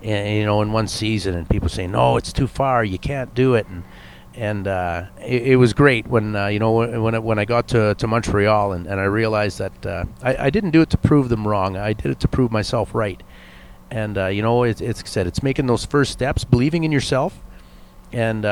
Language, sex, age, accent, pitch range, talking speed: English, male, 40-59, American, 100-125 Hz, 235 wpm